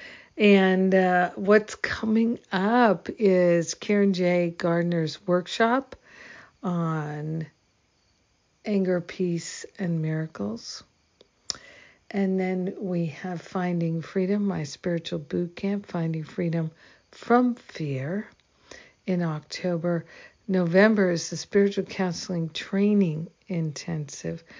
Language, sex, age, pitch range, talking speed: English, female, 60-79, 165-195 Hz, 95 wpm